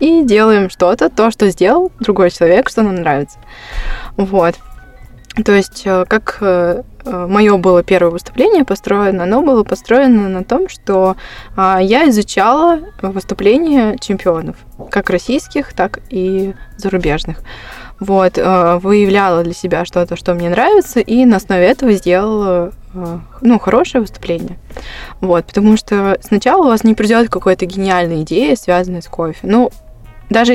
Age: 20-39